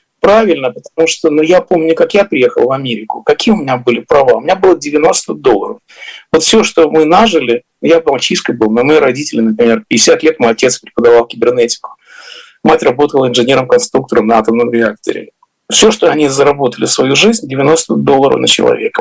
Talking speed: 175 wpm